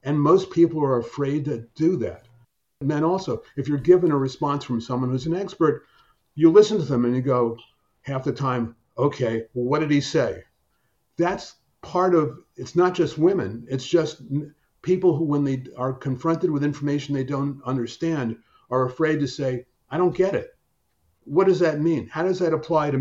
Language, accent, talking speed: English, American, 195 wpm